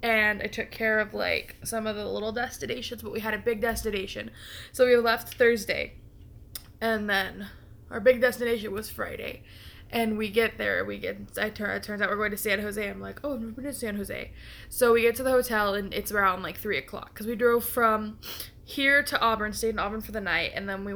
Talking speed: 225 wpm